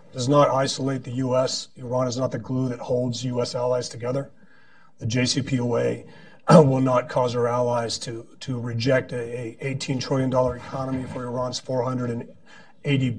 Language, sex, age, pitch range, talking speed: English, male, 40-59, 125-150 Hz, 150 wpm